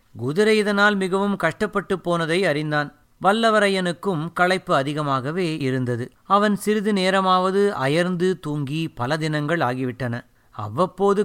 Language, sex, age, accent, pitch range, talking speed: Tamil, male, 30-49, native, 140-190 Hz, 100 wpm